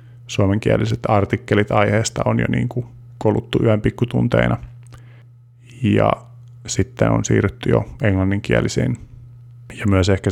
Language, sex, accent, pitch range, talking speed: Finnish, male, native, 100-120 Hz, 105 wpm